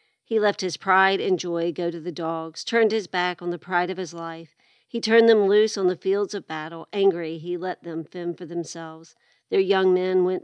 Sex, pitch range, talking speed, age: female, 170-190 Hz, 225 wpm, 40-59